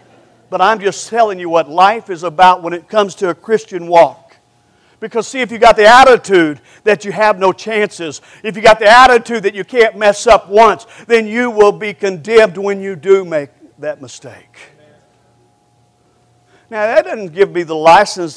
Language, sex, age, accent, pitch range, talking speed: English, male, 50-69, American, 140-200 Hz, 185 wpm